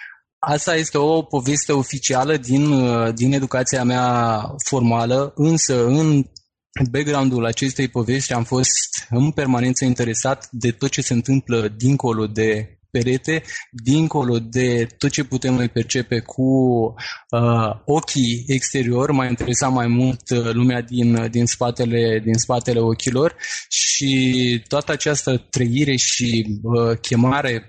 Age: 20-39